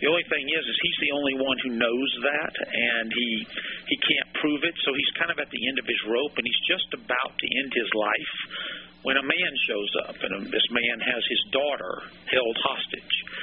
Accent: American